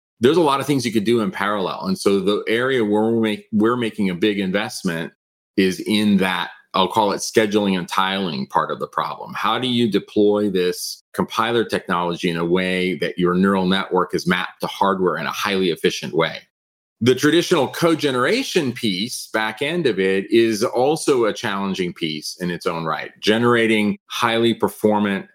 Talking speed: 185 wpm